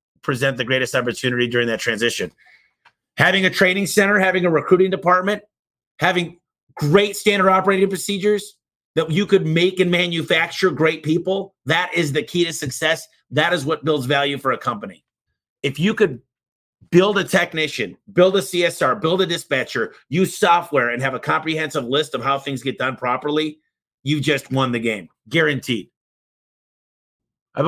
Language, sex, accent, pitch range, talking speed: English, male, American, 130-175 Hz, 160 wpm